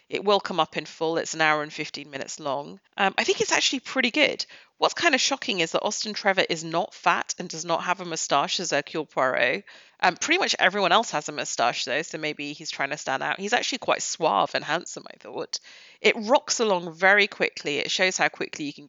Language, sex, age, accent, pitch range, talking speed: English, female, 30-49, British, 155-205 Hz, 240 wpm